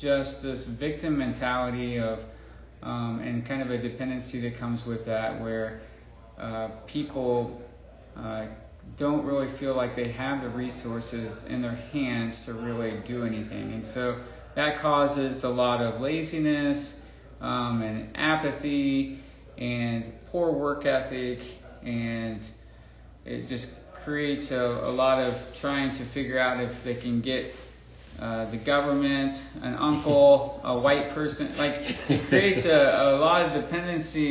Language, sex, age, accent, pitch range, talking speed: English, male, 20-39, American, 115-135 Hz, 140 wpm